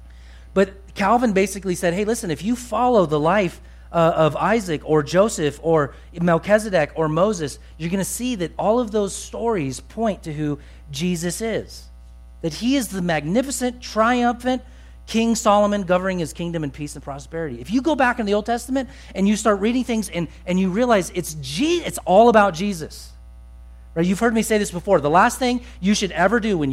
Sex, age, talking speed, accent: male, 40-59, 195 wpm, American